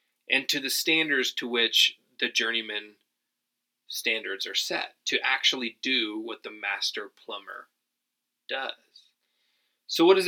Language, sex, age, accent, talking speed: English, male, 30-49, American, 130 wpm